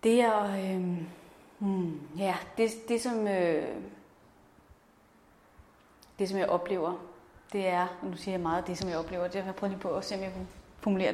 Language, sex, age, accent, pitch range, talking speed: Danish, female, 30-49, native, 185-220 Hz, 185 wpm